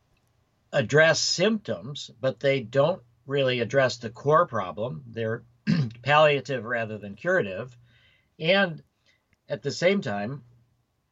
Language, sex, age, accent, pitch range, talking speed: English, male, 50-69, American, 115-140 Hz, 110 wpm